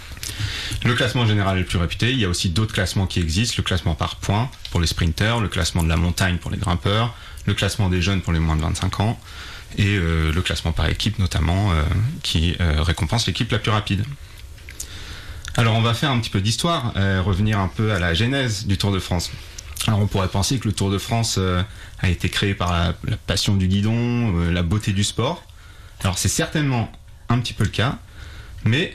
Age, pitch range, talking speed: 30-49, 90-110 Hz, 220 wpm